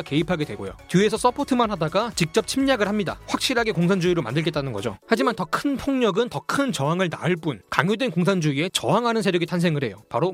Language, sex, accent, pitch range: Korean, male, native, 155-215 Hz